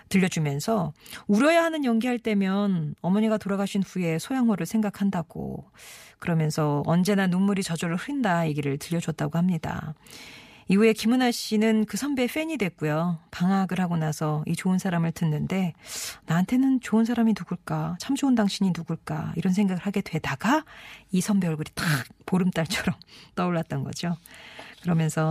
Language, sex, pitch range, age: Korean, female, 170-225 Hz, 40-59